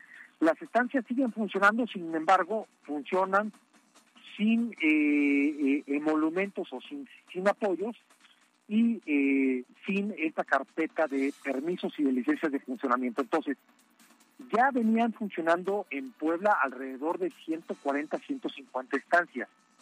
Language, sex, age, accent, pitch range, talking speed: Spanish, male, 50-69, Mexican, 145-235 Hz, 115 wpm